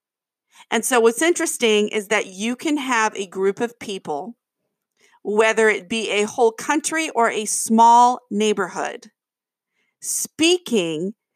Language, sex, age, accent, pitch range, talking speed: English, female, 40-59, American, 200-255 Hz, 125 wpm